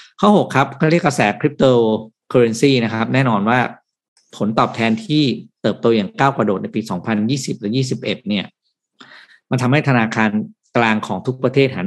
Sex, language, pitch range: male, Thai, 110-135 Hz